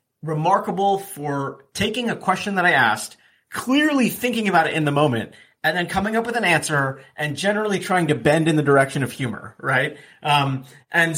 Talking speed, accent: 190 wpm, American